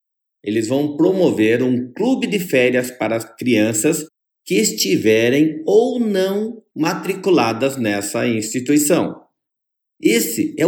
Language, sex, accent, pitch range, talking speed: Portuguese, male, Brazilian, 130-190 Hz, 105 wpm